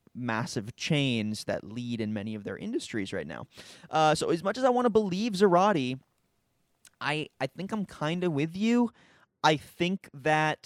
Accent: American